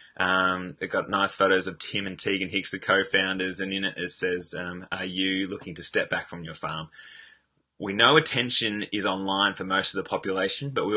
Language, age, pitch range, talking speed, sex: English, 20-39, 90-100 Hz, 215 wpm, male